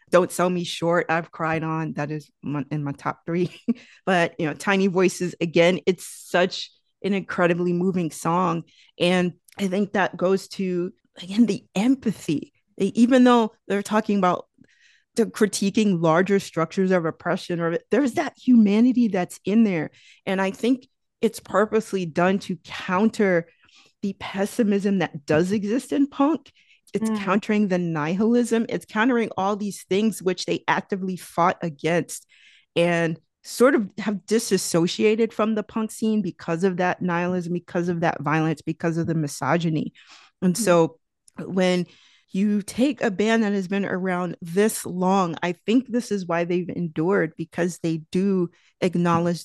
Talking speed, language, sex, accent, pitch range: 155 wpm, English, female, American, 170-210 Hz